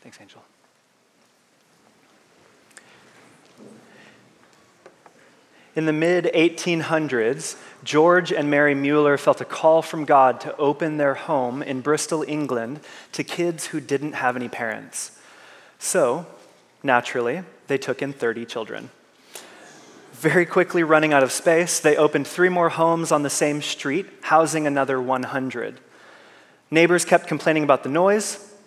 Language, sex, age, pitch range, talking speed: English, male, 20-39, 150-180 Hz, 125 wpm